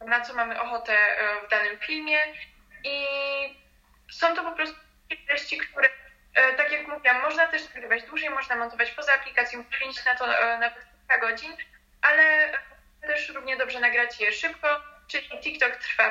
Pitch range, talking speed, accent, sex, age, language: 220-275 Hz, 155 wpm, native, female, 20-39, Polish